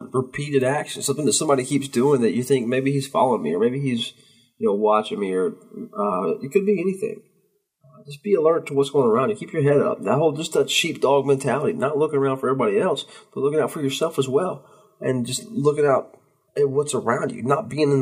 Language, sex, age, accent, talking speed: English, male, 20-39, American, 230 wpm